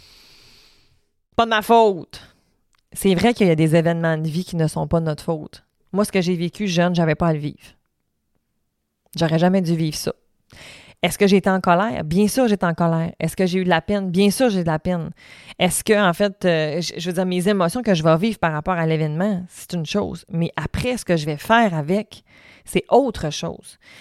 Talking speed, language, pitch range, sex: 230 wpm, French, 160-190 Hz, female